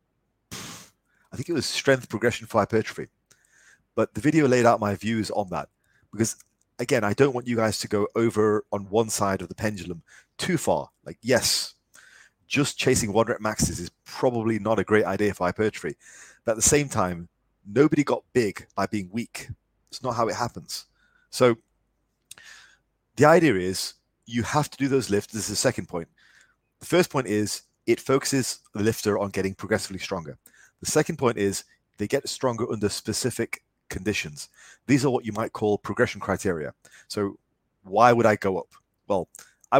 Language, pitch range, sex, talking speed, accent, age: English, 100-125 Hz, male, 180 wpm, British, 30-49